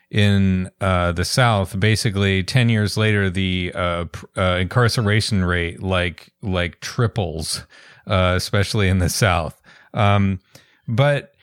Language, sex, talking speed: English, male, 125 wpm